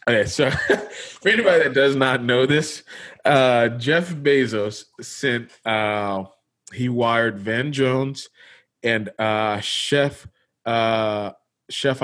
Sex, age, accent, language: male, 20-39, American, English